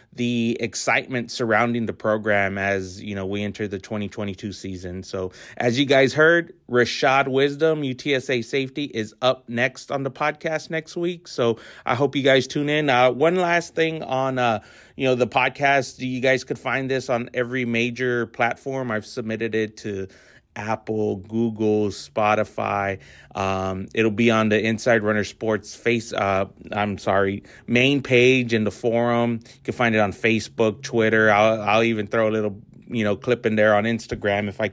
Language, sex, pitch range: English, male, 110-130 Hz